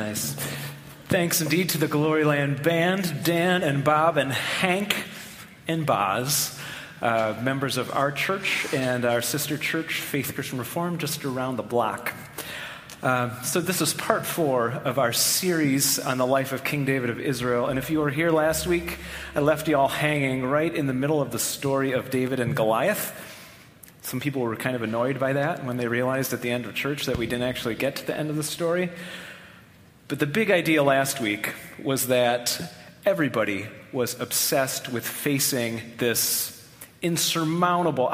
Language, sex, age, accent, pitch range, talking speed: English, male, 30-49, American, 125-155 Hz, 175 wpm